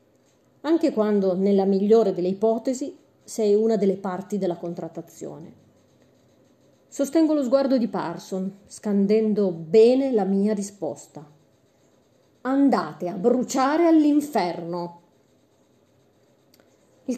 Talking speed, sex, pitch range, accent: 95 wpm, female, 195-275 Hz, native